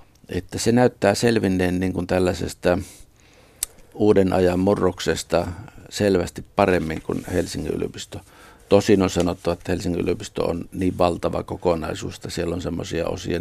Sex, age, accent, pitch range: male, 50-69, native, 90-110 Hz